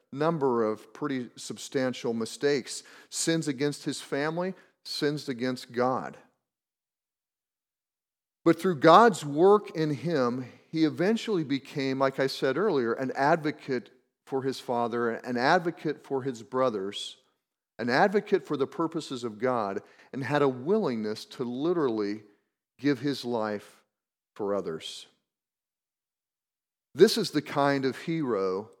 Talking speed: 125 wpm